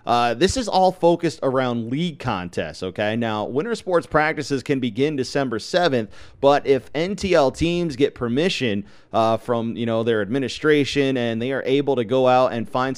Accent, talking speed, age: American, 175 wpm, 30-49